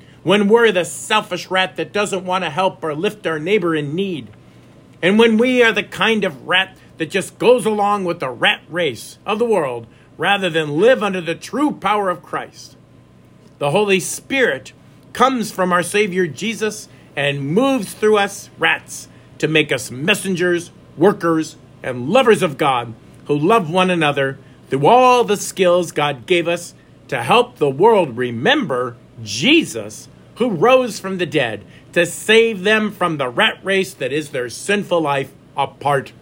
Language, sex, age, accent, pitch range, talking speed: English, male, 50-69, American, 150-205 Hz, 165 wpm